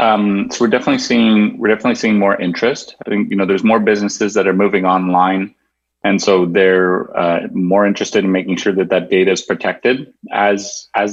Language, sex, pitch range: English, male, 95-105 Hz